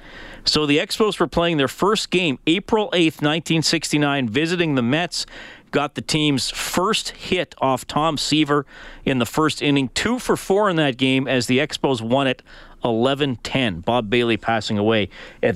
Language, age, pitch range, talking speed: English, 40-59, 130-175 Hz, 160 wpm